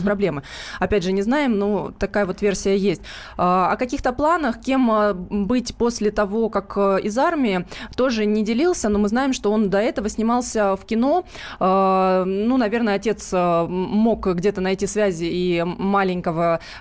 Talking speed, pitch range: 150 wpm, 190-230 Hz